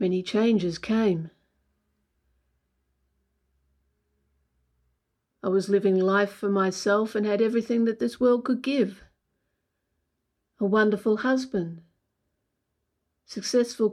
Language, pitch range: English, 180-245 Hz